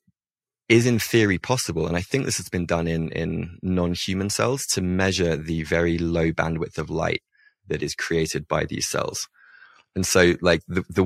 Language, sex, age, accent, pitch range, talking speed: English, male, 20-39, British, 80-95 Hz, 185 wpm